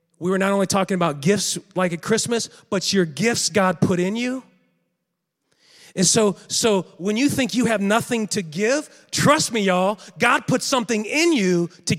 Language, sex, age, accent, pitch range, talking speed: English, male, 30-49, American, 190-265 Hz, 185 wpm